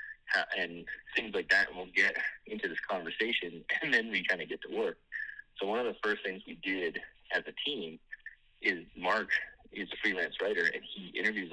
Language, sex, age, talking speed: English, male, 30-49, 205 wpm